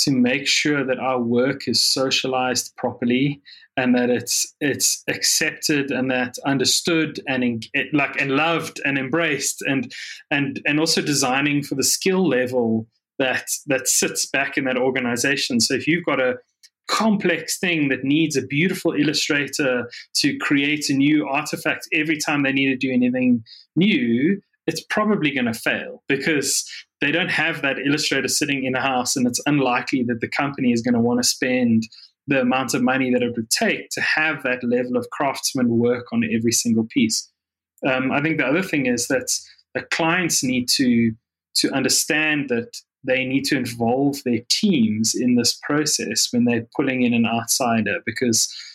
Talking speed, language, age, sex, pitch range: 175 wpm, English, 20-39, male, 125-155 Hz